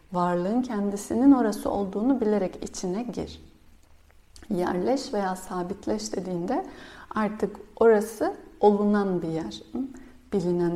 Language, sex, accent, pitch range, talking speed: Turkish, female, native, 175-230 Hz, 95 wpm